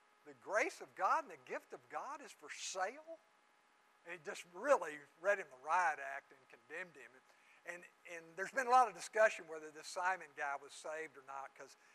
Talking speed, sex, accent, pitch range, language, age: 210 wpm, male, American, 165-215 Hz, English, 50-69